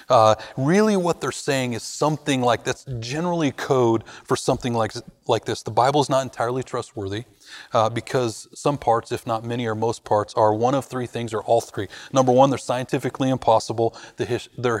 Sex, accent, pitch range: male, American, 110-130 Hz